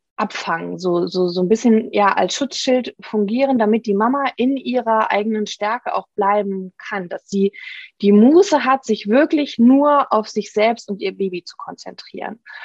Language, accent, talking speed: German, German, 170 wpm